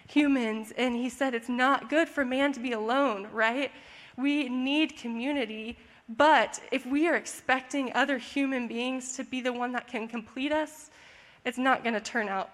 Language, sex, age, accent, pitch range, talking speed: English, female, 10-29, American, 235-280 Hz, 180 wpm